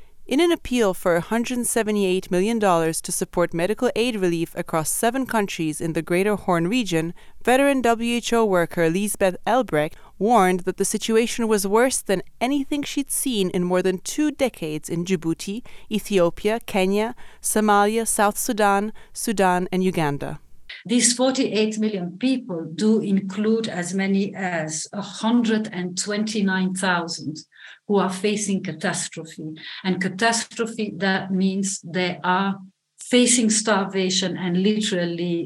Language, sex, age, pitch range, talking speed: English, female, 30-49, 175-220 Hz, 125 wpm